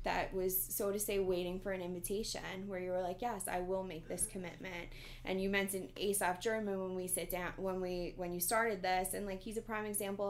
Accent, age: American, 20-39